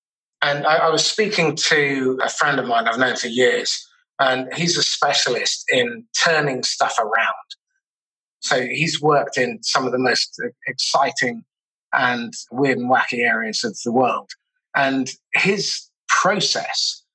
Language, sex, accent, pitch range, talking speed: English, male, British, 145-200 Hz, 145 wpm